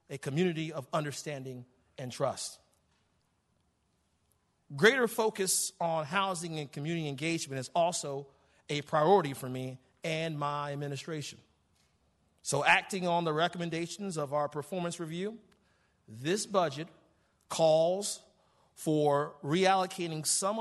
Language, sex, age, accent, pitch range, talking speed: English, male, 40-59, American, 145-195 Hz, 110 wpm